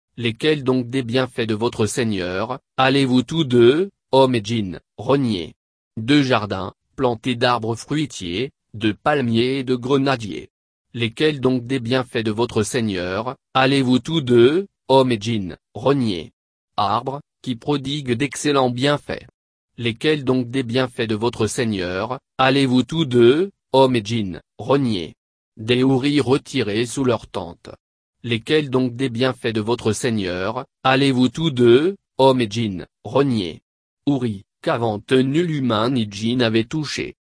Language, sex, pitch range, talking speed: French, male, 110-135 Hz, 135 wpm